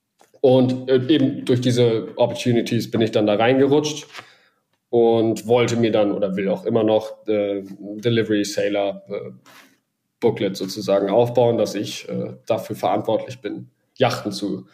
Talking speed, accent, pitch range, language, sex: 140 wpm, German, 110-125 Hz, German, male